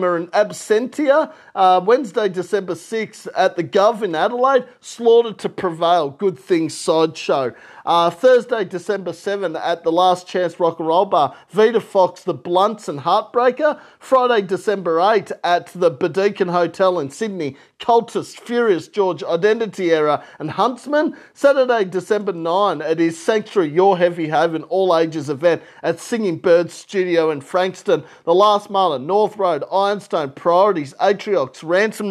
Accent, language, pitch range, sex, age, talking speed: Australian, English, 175-220 Hz, male, 40-59, 150 wpm